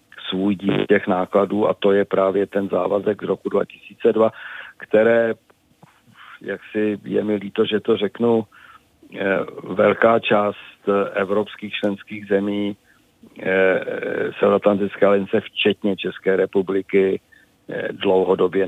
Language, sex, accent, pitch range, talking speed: Czech, male, native, 95-105 Hz, 105 wpm